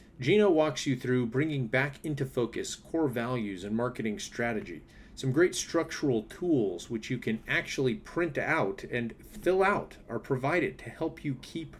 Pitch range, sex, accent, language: 115-150 Hz, male, American, English